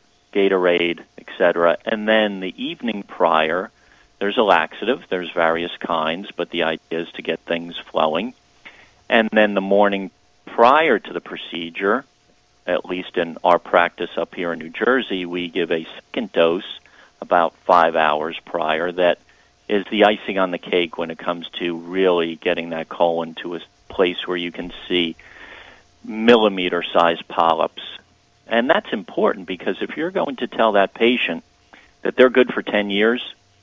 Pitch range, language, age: 85-100 Hz, English, 50-69